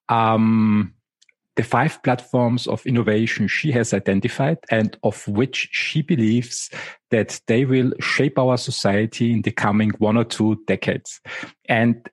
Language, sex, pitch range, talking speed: English, male, 115-135 Hz, 140 wpm